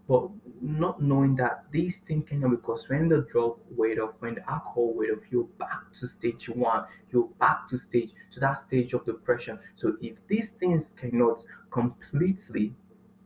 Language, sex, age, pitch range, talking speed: English, male, 20-39, 115-170 Hz, 170 wpm